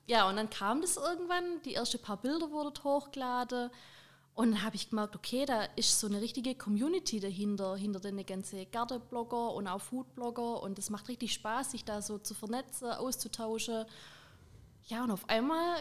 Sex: female